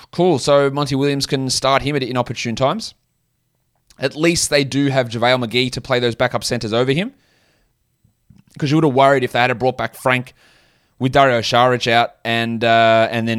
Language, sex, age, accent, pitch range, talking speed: English, male, 20-39, Australian, 105-135 Hz, 195 wpm